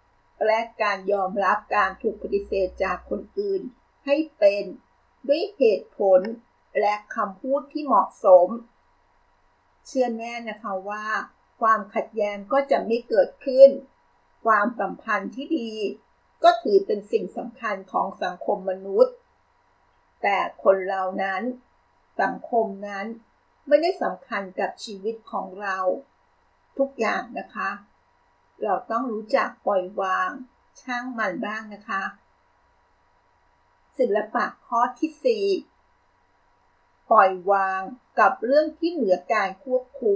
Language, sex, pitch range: Thai, female, 195-275 Hz